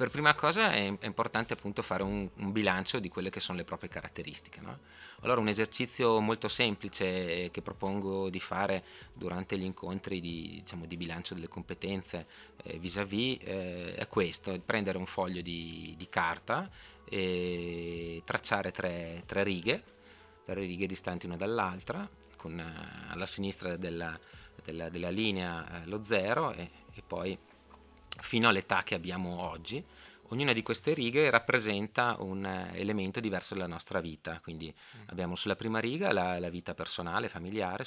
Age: 30-49